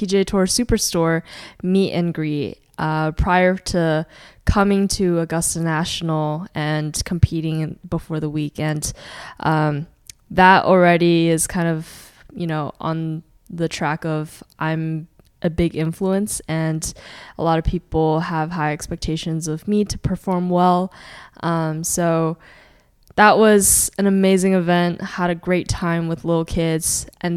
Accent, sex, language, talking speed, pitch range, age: American, female, English, 135 wpm, 155-175 Hz, 10-29